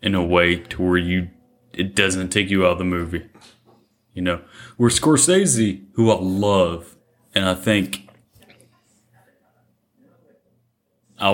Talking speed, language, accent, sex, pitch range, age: 130 wpm, English, American, male, 95-115 Hz, 30-49